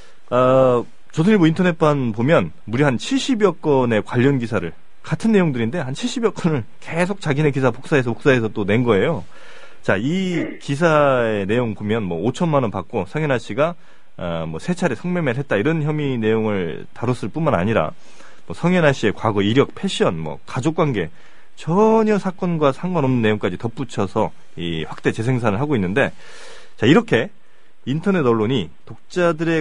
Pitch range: 115-170 Hz